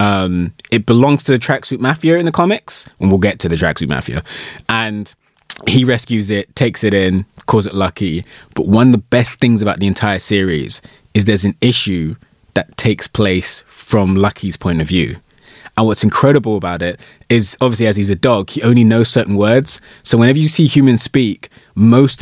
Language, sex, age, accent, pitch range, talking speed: English, male, 20-39, British, 105-135 Hz, 195 wpm